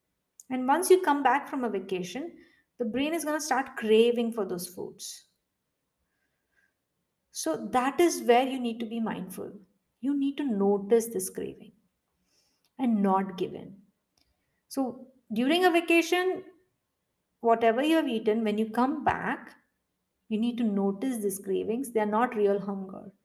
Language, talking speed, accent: English, 155 wpm, Indian